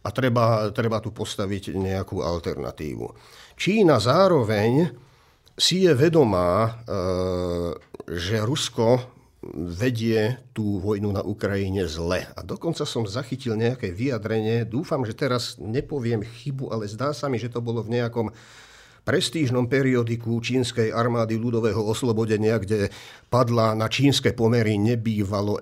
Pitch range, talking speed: 95-125 Hz, 125 wpm